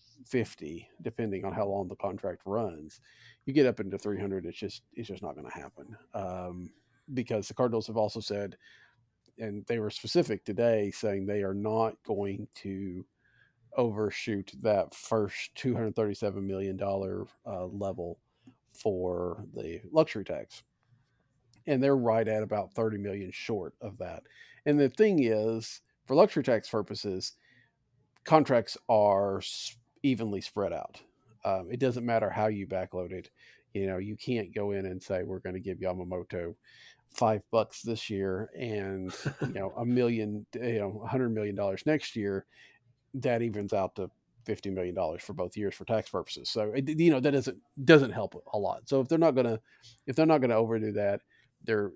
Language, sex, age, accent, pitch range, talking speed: English, male, 40-59, American, 100-120 Hz, 170 wpm